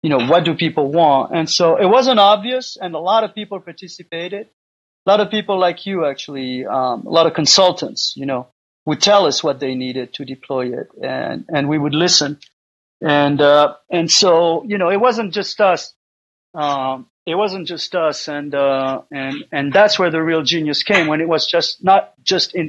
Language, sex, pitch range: English, male, 140-170 Hz